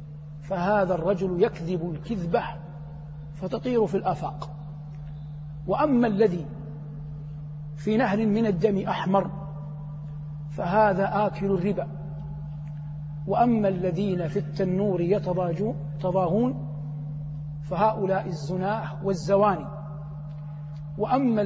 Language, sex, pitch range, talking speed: Arabic, male, 150-195 Hz, 75 wpm